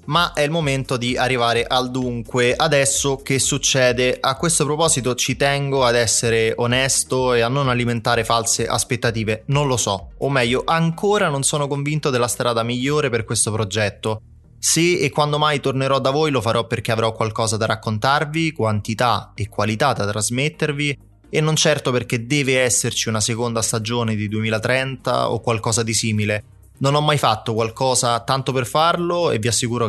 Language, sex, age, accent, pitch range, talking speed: Italian, male, 20-39, native, 110-140 Hz, 170 wpm